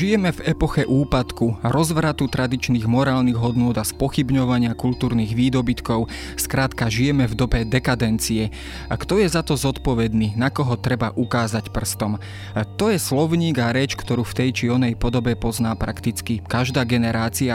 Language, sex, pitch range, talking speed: Slovak, male, 115-135 Hz, 150 wpm